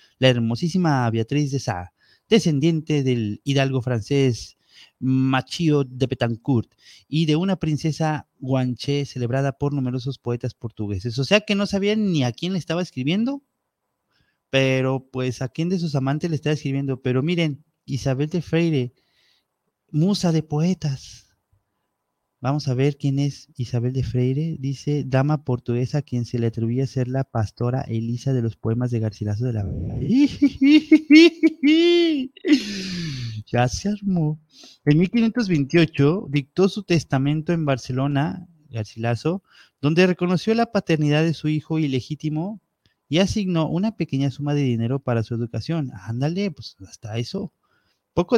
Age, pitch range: 30-49, 125-165 Hz